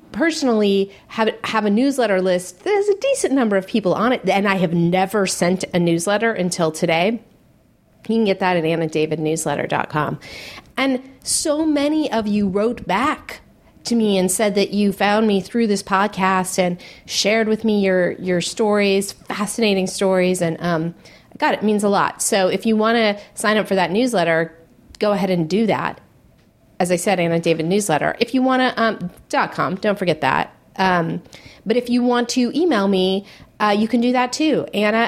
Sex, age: female, 30-49